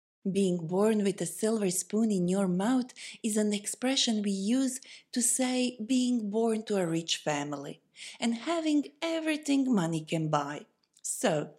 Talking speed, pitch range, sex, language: 150 wpm, 185-260 Hz, female, Persian